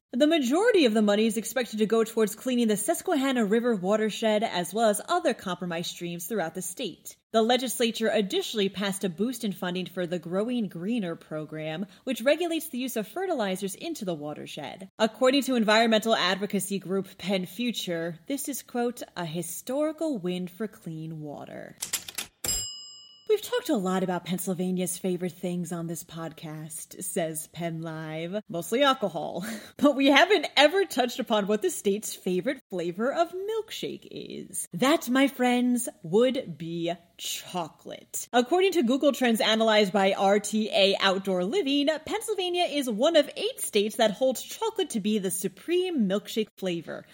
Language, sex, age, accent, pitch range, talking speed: English, female, 30-49, American, 180-265 Hz, 155 wpm